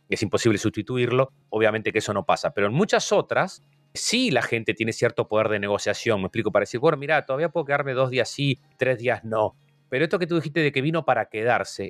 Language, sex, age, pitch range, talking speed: Spanish, male, 30-49, 115-155 Hz, 230 wpm